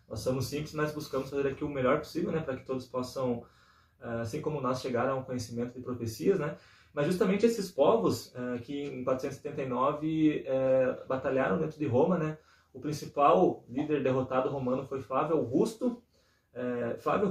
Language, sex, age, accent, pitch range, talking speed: Portuguese, male, 20-39, Brazilian, 120-145 Hz, 160 wpm